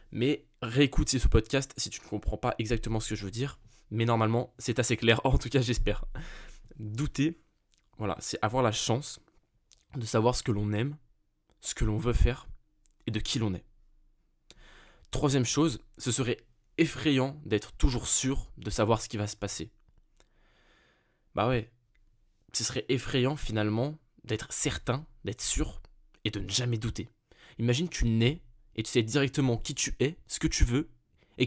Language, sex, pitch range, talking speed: French, male, 110-135 Hz, 175 wpm